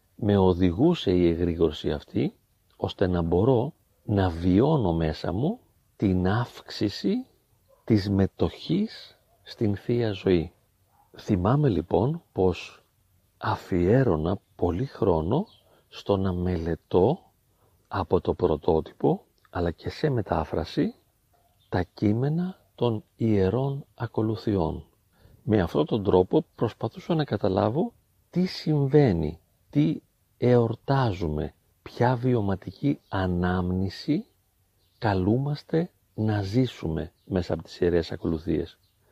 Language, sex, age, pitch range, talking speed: Greek, male, 50-69, 90-125 Hz, 95 wpm